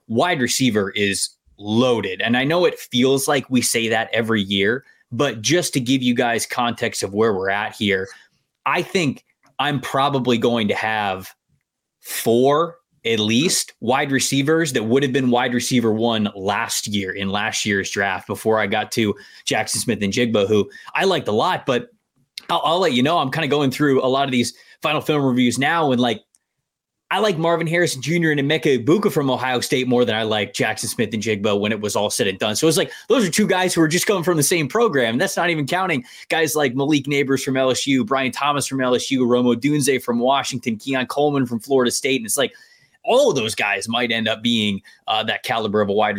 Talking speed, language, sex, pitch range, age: 220 wpm, English, male, 110-145 Hz, 20-39